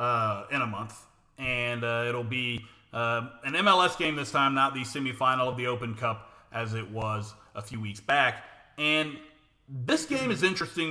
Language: English